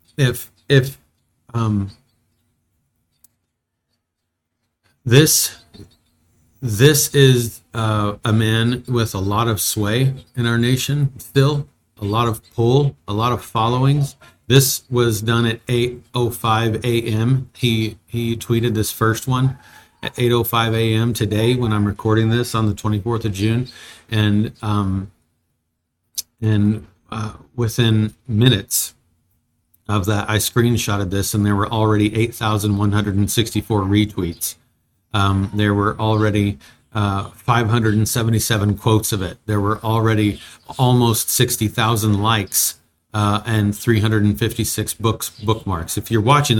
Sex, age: male, 40-59